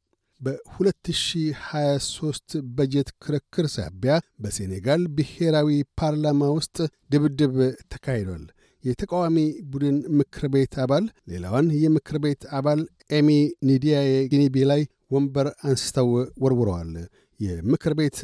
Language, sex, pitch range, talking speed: Amharic, male, 130-150 Hz, 80 wpm